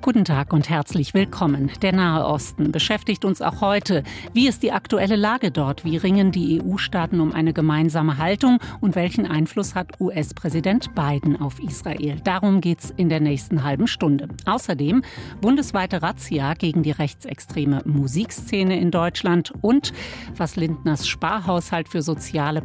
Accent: German